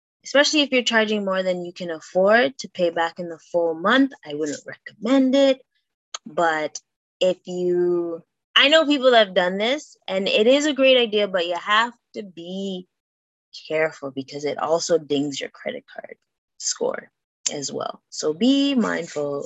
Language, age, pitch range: English, 20-39, 165-255 Hz